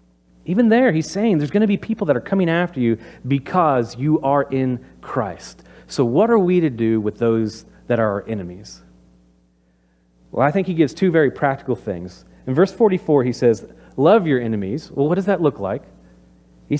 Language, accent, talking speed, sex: English, American, 195 wpm, male